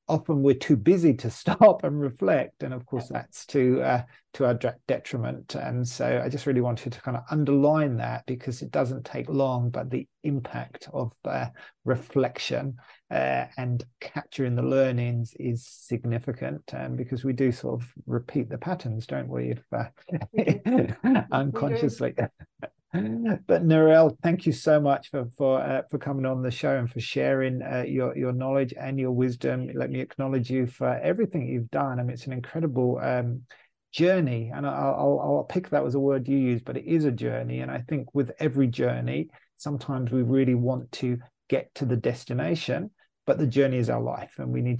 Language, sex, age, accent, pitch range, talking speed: English, male, 40-59, British, 120-145 Hz, 190 wpm